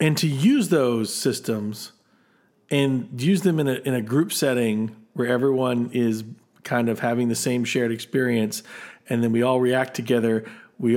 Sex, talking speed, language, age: male, 170 wpm, English, 40-59